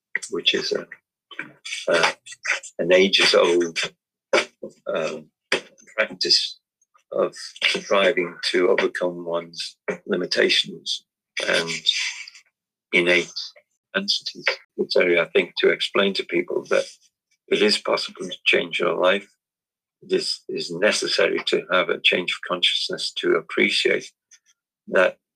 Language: English